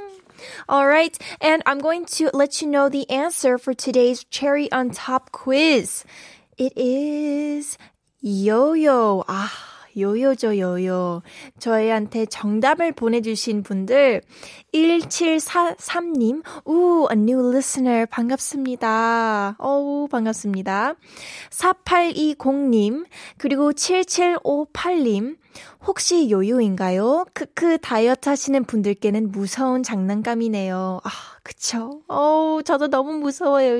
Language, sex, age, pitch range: Korean, female, 20-39, 225-295 Hz